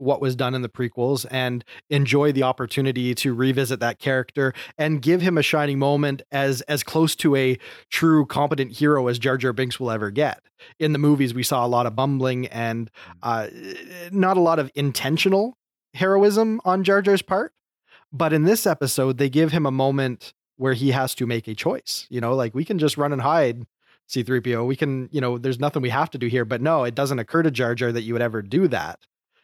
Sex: male